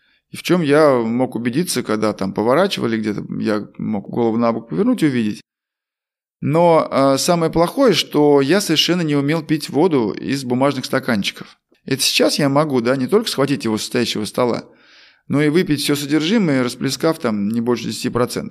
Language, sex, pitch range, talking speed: Russian, male, 120-160 Hz, 170 wpm